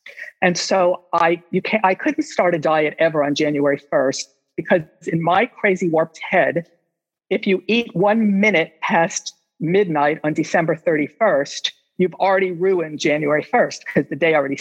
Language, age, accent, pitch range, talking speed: English, 50-69, American, 160-205 Hz, 160 wpm